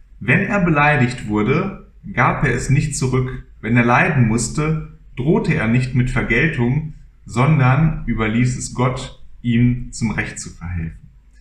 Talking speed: 140 wpm